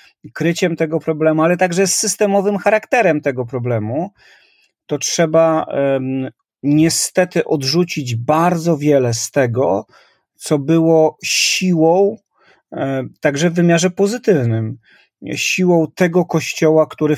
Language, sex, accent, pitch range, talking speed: Polish, male, native, 135-180 Hz, 110 wpm